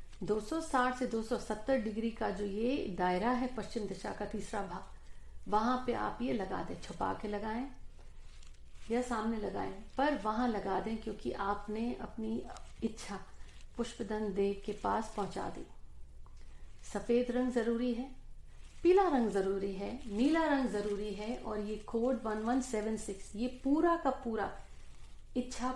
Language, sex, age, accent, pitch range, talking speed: Hindi, female, 50-69, native, 200-245 Hz, 140 wpm